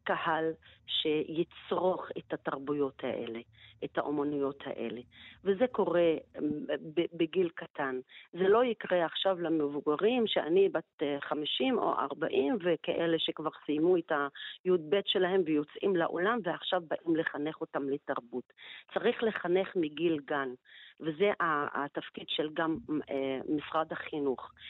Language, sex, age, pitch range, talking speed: Hebrew, female, 40-59, 145-175 Hz, 110 wpm